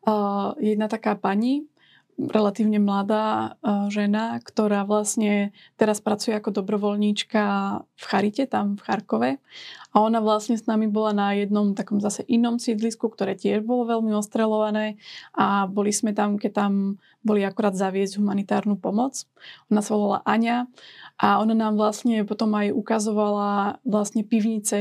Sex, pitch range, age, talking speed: female, 205-225 Hz, 20-39, 145 wpm